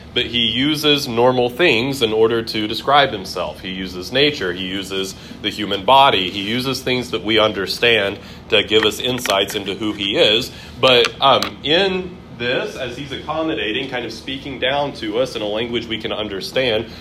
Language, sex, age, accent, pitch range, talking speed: English, male, 30-49, American, 105-135 Hz, 180 wpm